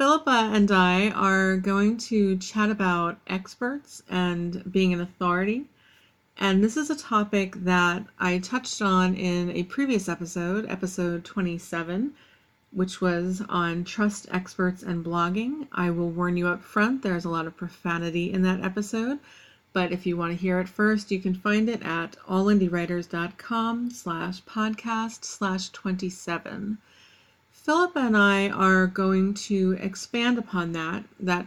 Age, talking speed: 40-59, 145 wpm